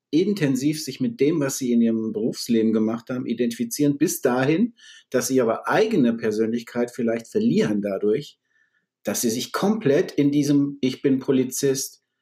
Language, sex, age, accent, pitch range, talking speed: German, male, 50-69, German, 120-145 Hz, 140 wpm